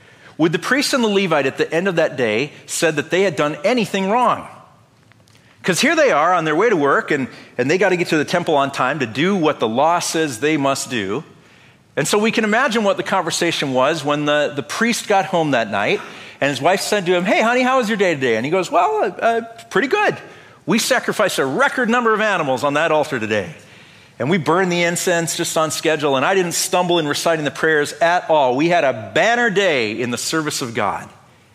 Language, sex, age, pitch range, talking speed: English, male, 40-59, 140-215 Hz, 235 wpm